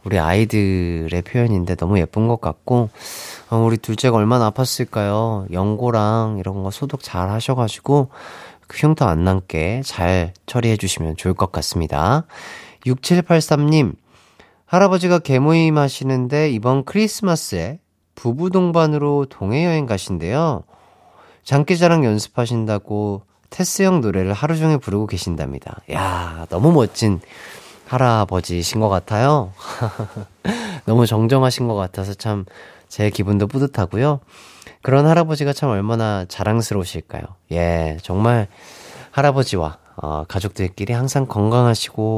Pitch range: 100-145 Hz